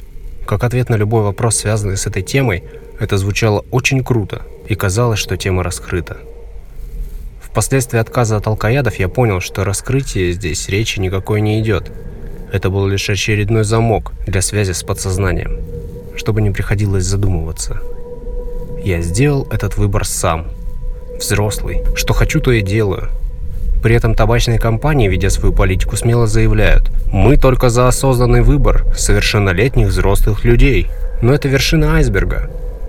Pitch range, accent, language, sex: 95-120 Hz, native, Russian, male